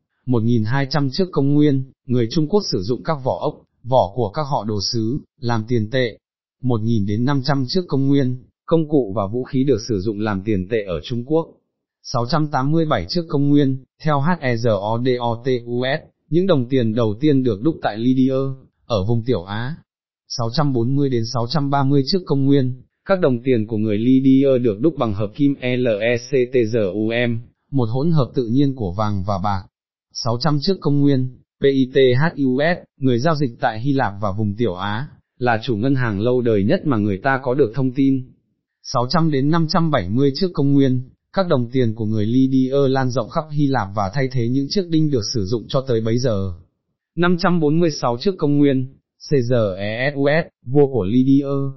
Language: Vietnamese